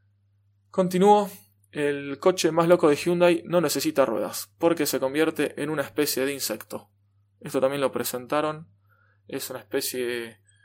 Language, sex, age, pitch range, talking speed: Spanish, male, 20-39, 115-150 Hz, 145 wpm